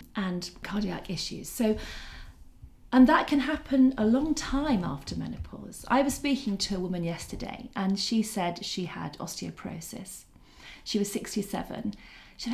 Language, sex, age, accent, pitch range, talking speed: English, female, 40-59, British, 180-245 Hz, 145 wpm